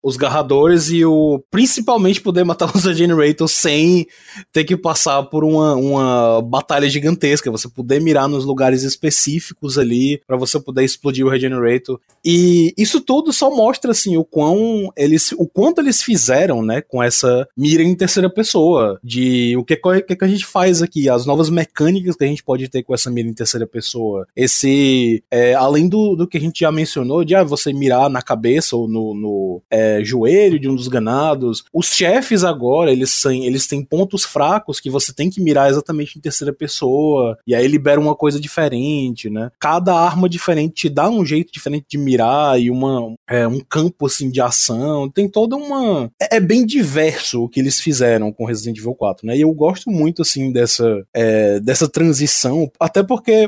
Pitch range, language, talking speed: 130-170 Hz, Portuguese, 185 wpm